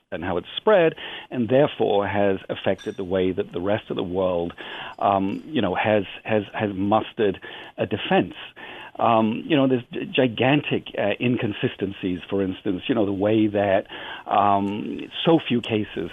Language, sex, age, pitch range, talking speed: English, male, 50-69, 95-115 Hz, 160 wpm